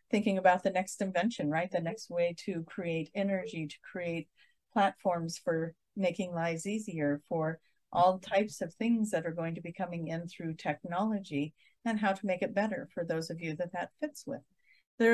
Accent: American